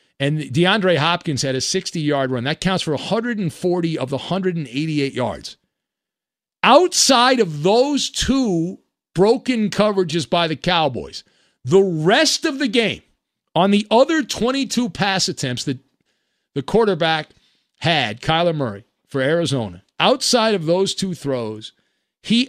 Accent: American